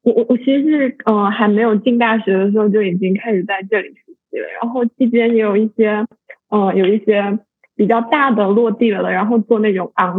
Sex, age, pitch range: female, 20-39, 205-240 Hz